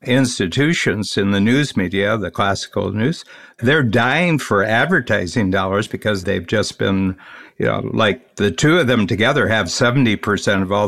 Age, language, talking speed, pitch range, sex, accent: 60-79, English, 160 wpm, 100-125 Hz, male, American